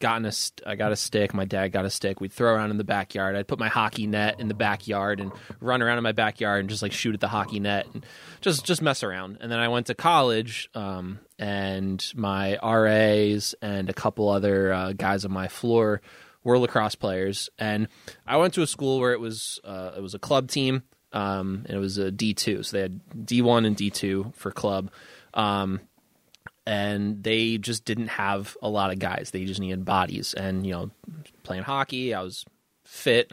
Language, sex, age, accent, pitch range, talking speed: English, male, 20-39, American, 100-115 Hz, 220 wpm